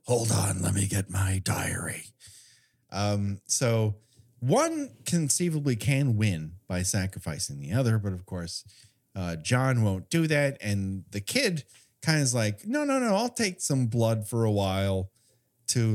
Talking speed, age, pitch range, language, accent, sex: 160 wpm, 30-49, 105-140 Hz, English, American, male